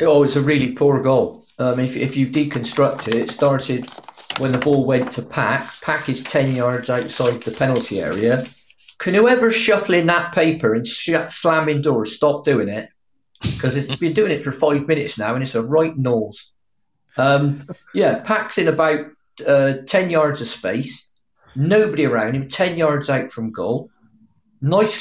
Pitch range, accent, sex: 125-155 Hz, British, male